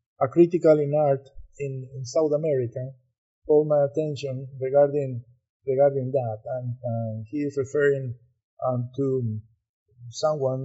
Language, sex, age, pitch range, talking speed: English, male, 50-69, 125-150 Hz, 125 wpm